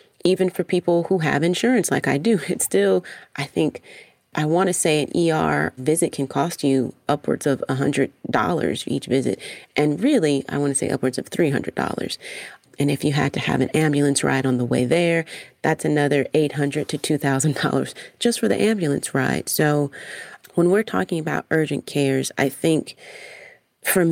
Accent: American